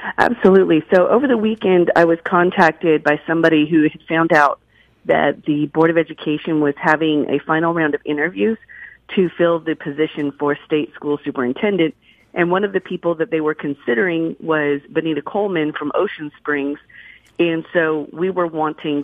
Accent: American